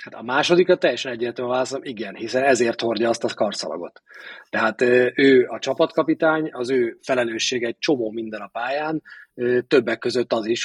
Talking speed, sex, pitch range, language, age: 160 wpm, male, 110-140 Hz, Hungarian, 30-49